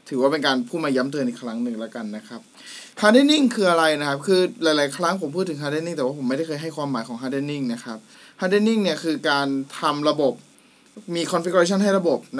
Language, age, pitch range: Thai, 20-39, 135-185 Hz